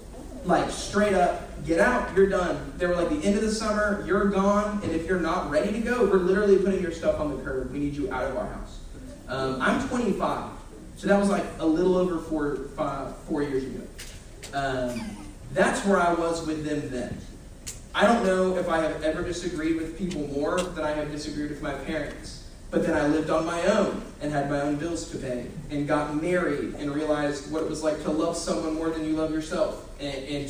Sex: male